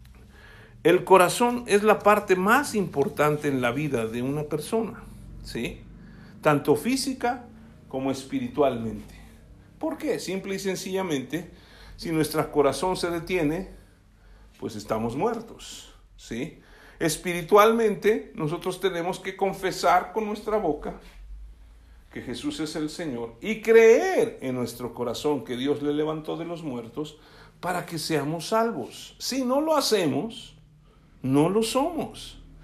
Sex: male